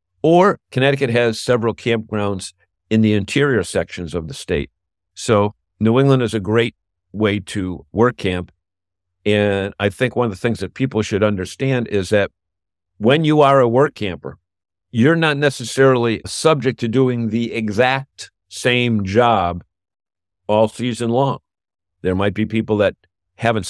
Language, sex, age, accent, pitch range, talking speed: English, male, 50-69, American, 95-115 Hz, 150 wpm